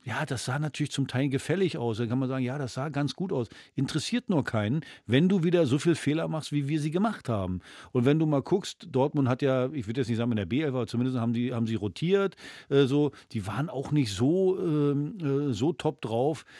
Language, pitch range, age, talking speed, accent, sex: German, 130-165 Hz, 50-69, 245 wpm, German, male